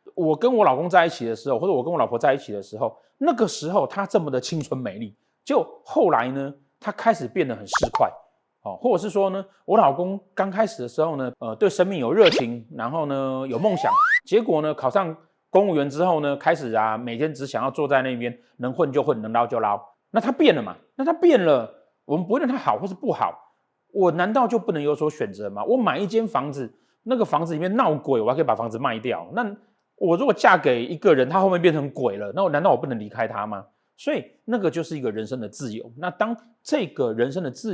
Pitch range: 130-205 Hz